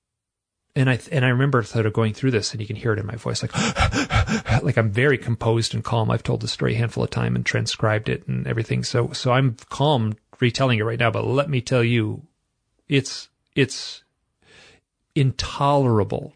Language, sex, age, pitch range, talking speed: English, male, 40-59, 110-135 Hz, 200 wpm